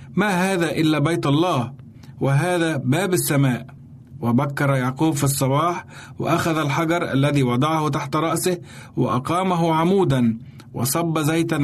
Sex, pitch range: male, 125-165 Hz